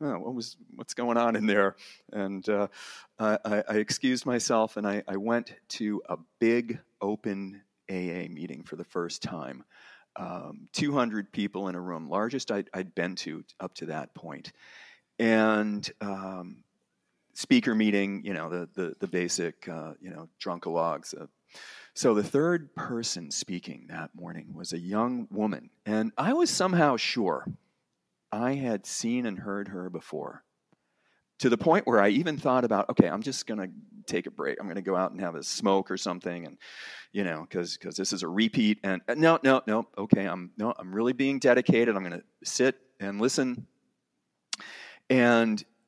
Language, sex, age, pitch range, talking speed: English, male, 40-59, 95-125 Hz, 180 wpm